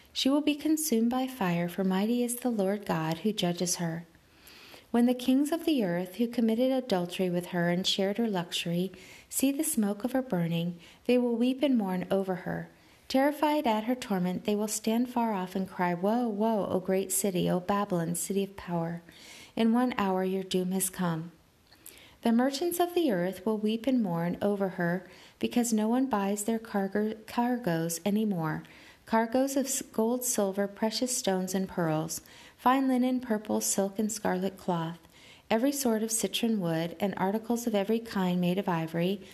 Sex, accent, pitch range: female, American, 180-240 Hz